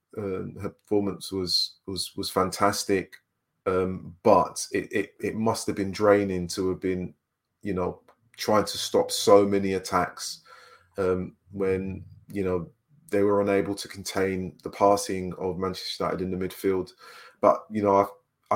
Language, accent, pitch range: English, British, 90-100 Hz